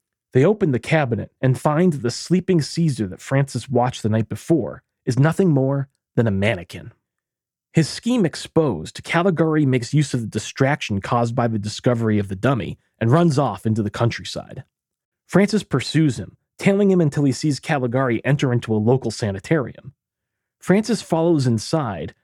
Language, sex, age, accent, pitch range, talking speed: English, male, 40-59, American, 110-155 Hz, 165 wpm